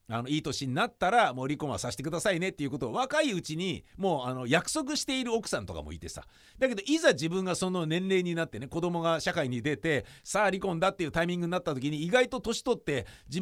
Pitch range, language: 130-200 Hz, Japanese